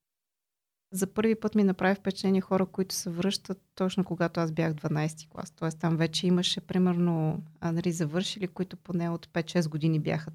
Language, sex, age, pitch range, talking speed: Bulgarian, female, 30-49, 160-185 Hz, 175 wpm